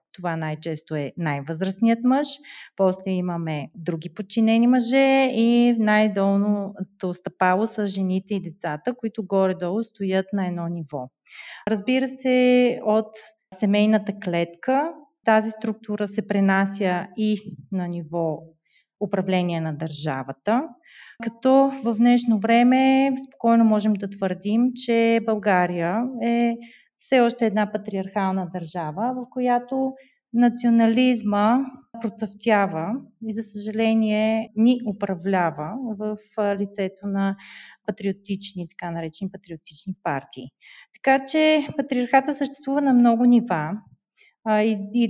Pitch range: 185-230 Hz